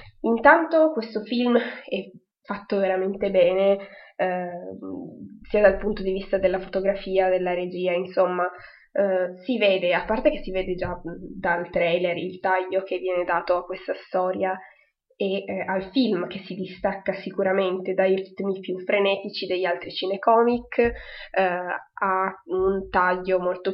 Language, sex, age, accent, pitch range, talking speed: Italian, female, 20-39, native, 185-205 Hz, 145 wpm